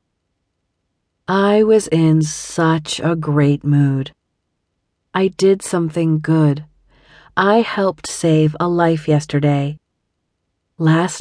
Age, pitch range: 40-59, 150-200 Hz